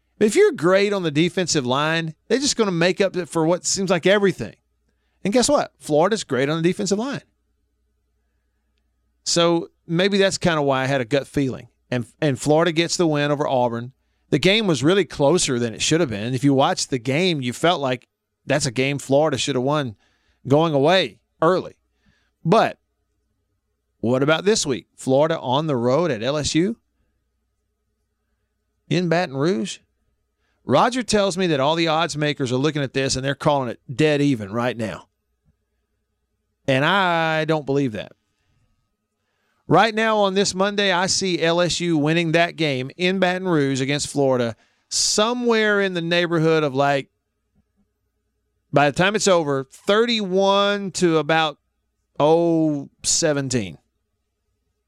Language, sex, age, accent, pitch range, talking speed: English, male, 40-59, American, 105-170 Hz, 160 wpm